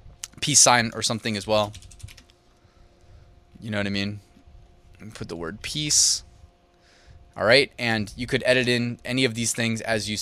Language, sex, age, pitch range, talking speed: English, male, 20-39, 100-120 Hz, 165 wpm